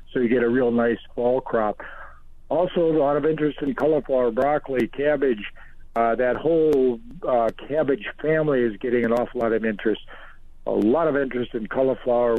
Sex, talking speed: male, 175 wpm